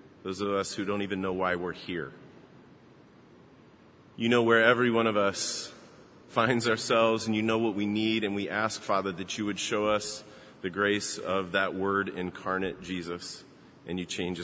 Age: 40-59